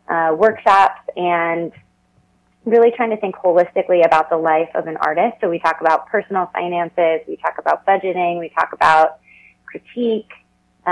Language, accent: English, American